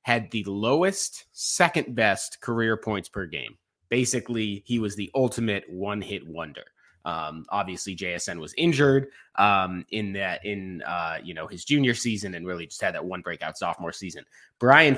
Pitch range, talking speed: 100-125 Hz, 170 wpm